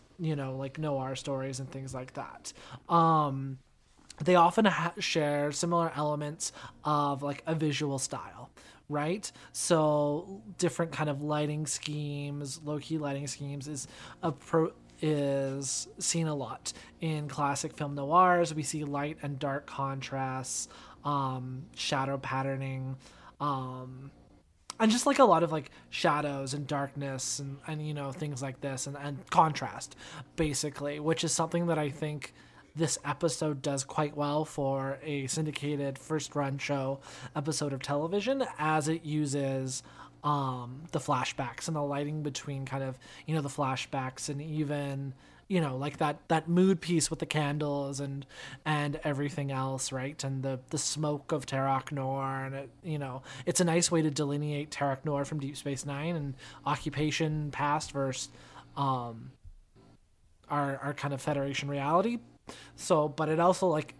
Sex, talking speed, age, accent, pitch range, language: male, 150 wpm, 20-39, American, 135-155 Hz, English